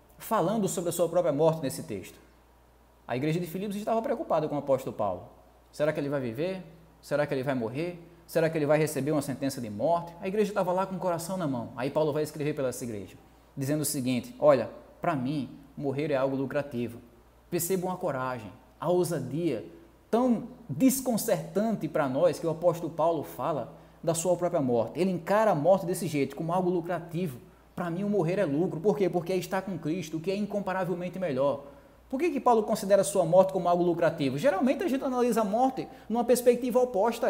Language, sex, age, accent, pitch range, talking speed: Portuguese, male, 20-39, Brazilian, 145-210 Hz, 205 wpm